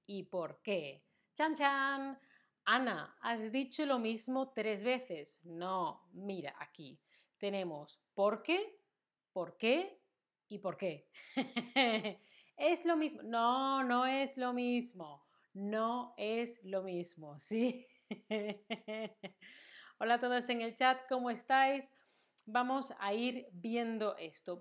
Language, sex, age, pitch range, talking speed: Spanish, female, 30-49, 200-265 Hz, 125 wpm